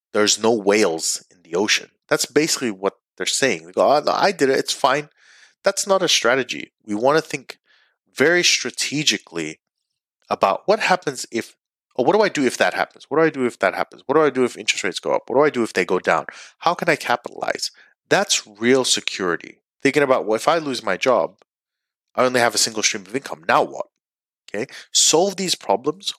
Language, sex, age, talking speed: English, male, 30-49, 220 wpm